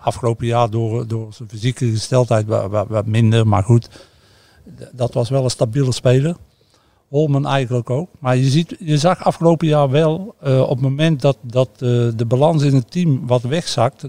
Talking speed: 180 wpm